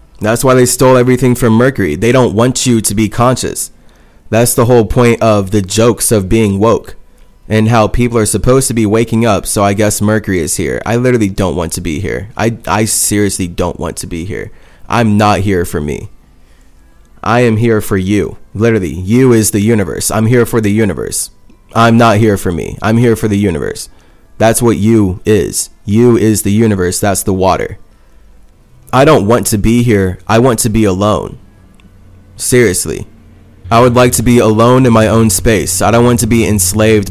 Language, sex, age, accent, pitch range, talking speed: English, male, 20-39, American, 100-115 Hz, 200 wpm